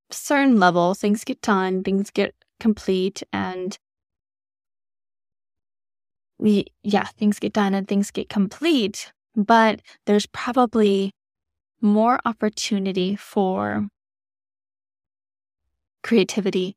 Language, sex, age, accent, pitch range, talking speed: English, female, 10-29, American, 185-220 Hz, 90 wpm